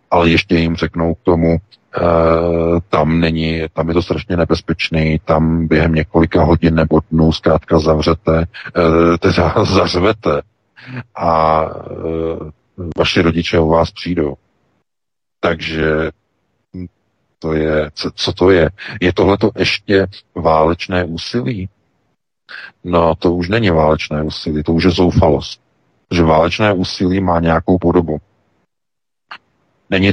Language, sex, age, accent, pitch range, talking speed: Czech, male, 40-59, native, 80-90 Hz, 120 wpm